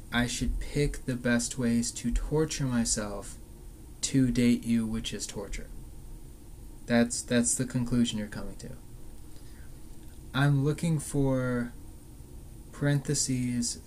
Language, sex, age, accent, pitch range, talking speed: English, male, 20-39, American, 110-130 Hz, 115 wpm